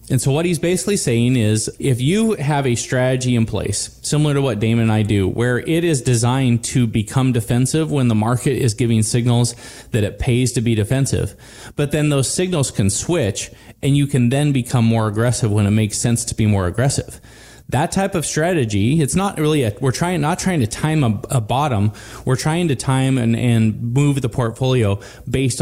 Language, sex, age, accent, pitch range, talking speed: English, male, 20-39, American, 110-140 Hz, 205 wpm